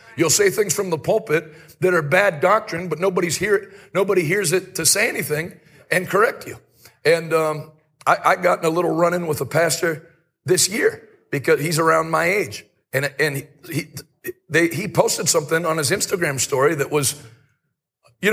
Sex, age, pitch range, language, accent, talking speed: male, 40-59, 155-190 Hz, English, American, 185 wpm